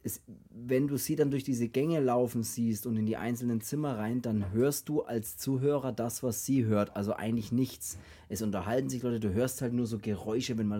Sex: male